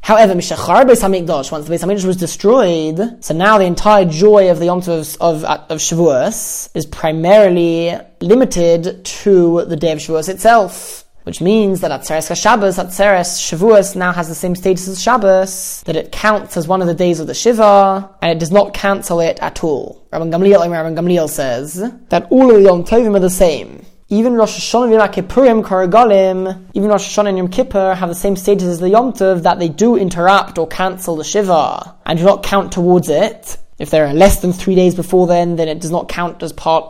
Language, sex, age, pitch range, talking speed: English, male, 20-39, 170-205 Hz, 200 wpm